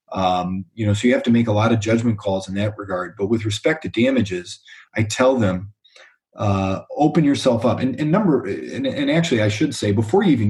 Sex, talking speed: male, 230 wpm